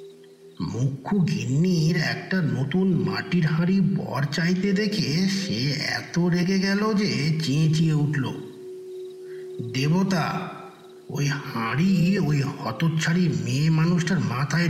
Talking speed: 90 wpm